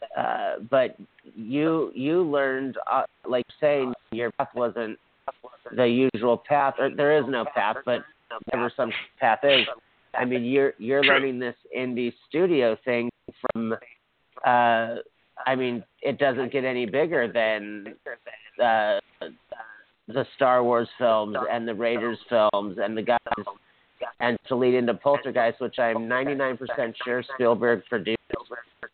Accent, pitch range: American, 115-125 Hz